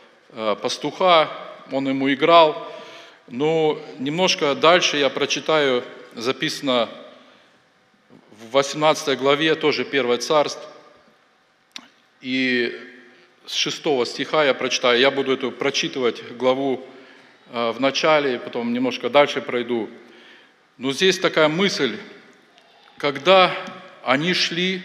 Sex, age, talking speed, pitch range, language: male, 40-59, 95 wpm, 130-170 Hz, Russian